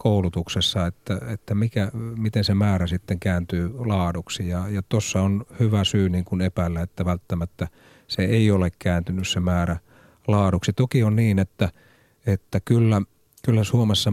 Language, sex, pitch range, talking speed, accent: Finnish, male, 90-115 Hz, 155 wpm, native